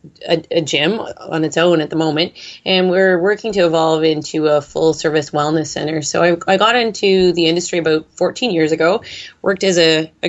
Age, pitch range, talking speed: 20-39, 160-175 Hz, 205 wpm